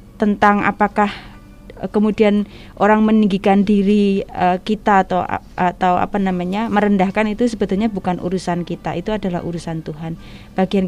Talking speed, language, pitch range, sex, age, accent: 120 wpm, Indonesian, 180-210 Hz, female, 20-39, native